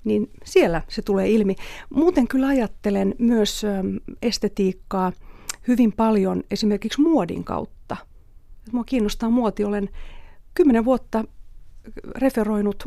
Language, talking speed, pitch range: Finnish, 105 wpm, 200-240 Hz